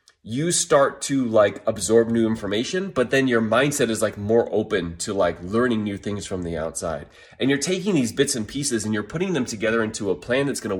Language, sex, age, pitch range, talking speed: English, male, 30-49, 105-160 Hz, 220 wpm